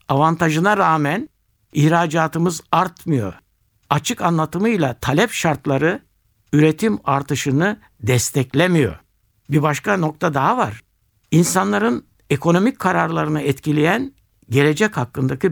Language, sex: Turkish, male